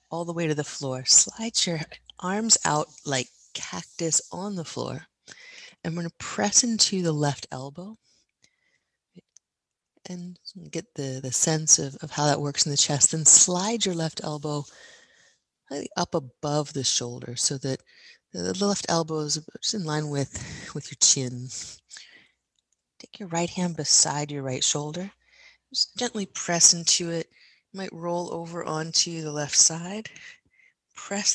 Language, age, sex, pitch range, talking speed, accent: English, 30-49, female, 145-185 Hz, 150 wpm, American